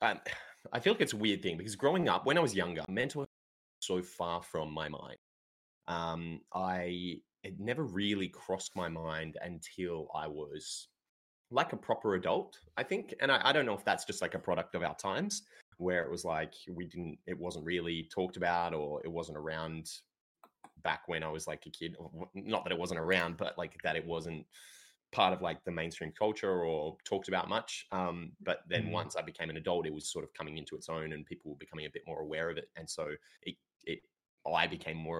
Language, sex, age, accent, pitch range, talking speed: English, male, 20-39, Australian, 80-90 Hz, 220 wpm